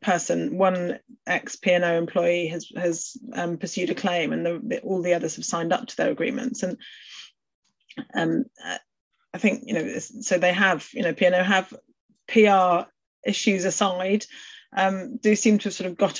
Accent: British